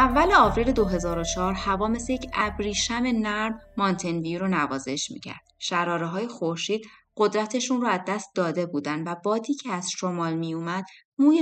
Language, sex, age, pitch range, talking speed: Persian, female, 30-49, 180-225 Hz, 160 wpm